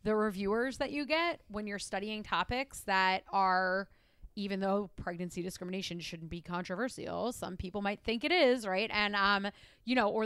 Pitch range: 185-225 Hz